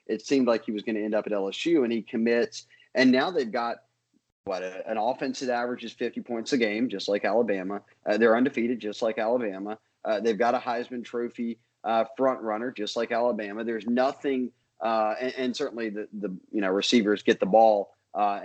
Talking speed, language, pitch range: 205 wpm, English, 105-120 Hz